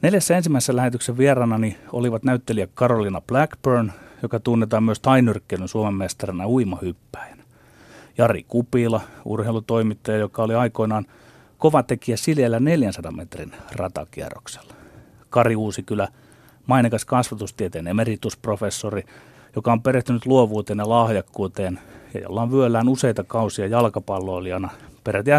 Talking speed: 105 wpm